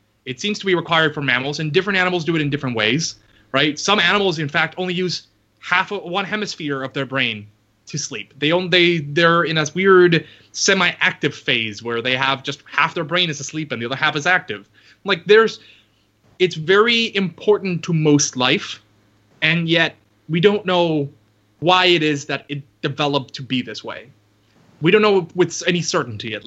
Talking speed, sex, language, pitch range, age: 195 wpm, male, English, 130-180 Hz, 20-39